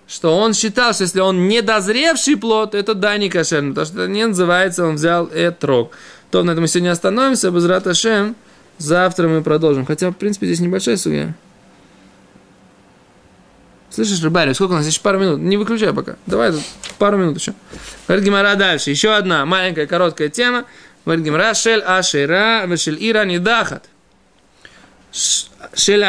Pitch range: 155-210 Hz